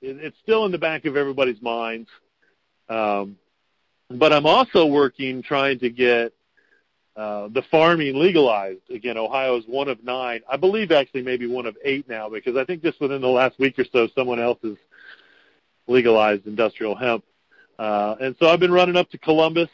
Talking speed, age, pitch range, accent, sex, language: 180 wpm, 40-59, 120-150 Hz, American, male, English